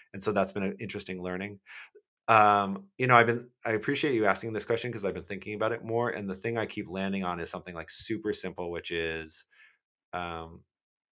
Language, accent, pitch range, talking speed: English, American, 90-110 Hz, 215 wpm